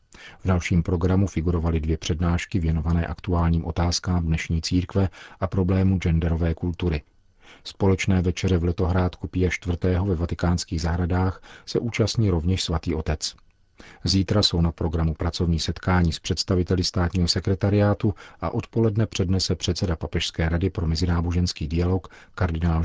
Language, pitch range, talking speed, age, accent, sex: Czech, 85-95 Hz, 130 wpm, 40-59, native, male